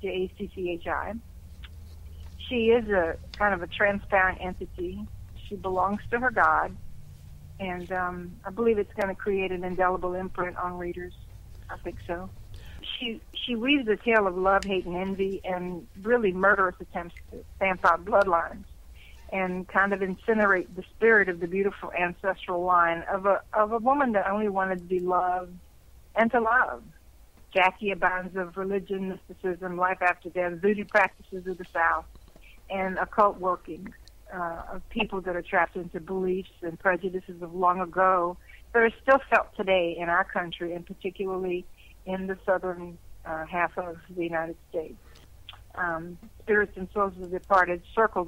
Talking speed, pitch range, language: 160 wpm, 175-200 Hz, English